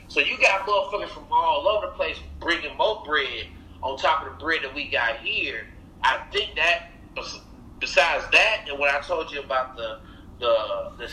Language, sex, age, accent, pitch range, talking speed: English, male, 30-49, American, 140-210 Hz, 190 wpm